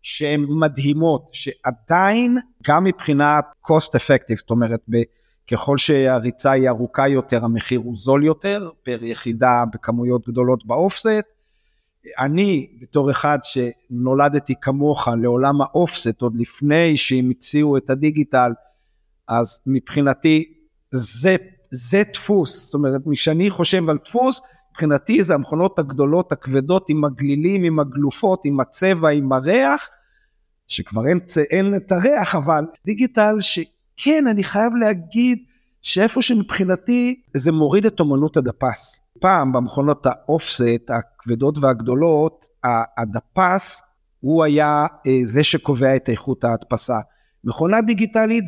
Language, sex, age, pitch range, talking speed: Hebrew, male, 50-69, 130-175 Hz, 115 wpm